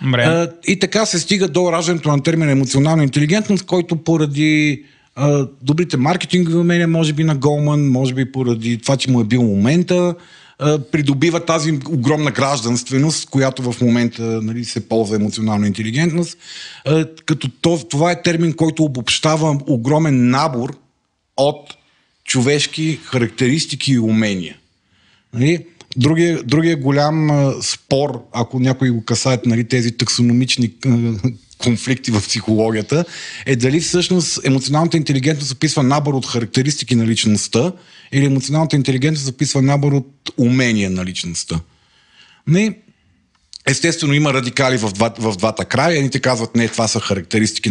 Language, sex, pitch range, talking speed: Bulgarian, male, 115-160 Hz, 130 wpm